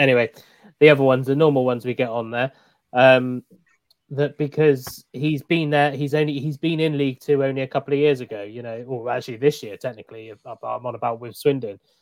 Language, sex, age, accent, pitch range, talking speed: English, male, 20-39, British, 120-140 Hz, 210 wpm